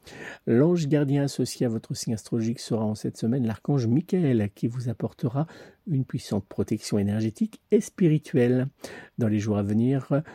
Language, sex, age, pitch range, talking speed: French, male, 50-69, 110-140 Hz, 155 wpm